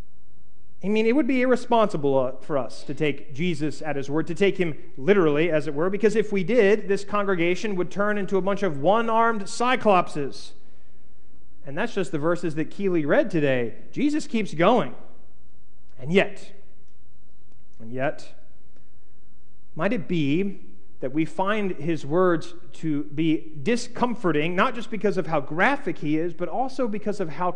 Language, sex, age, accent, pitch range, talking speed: English, male, 40-59, American, 150-200 Hz, 165 wpm